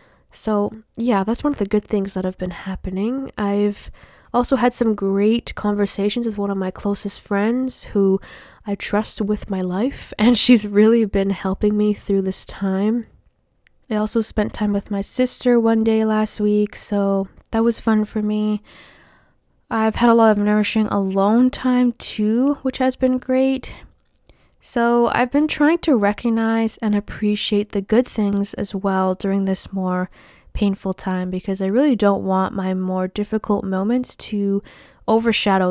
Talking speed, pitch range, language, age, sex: 165 wpm, 200-230 Hz, English, 10-29, female